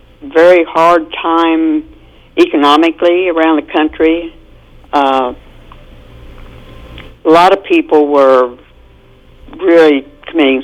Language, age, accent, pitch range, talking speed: English, 60-79, American, 145-170 Hz, 85 wpm